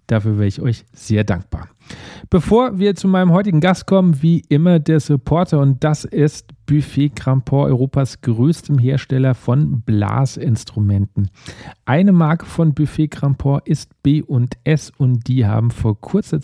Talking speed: 140 wpm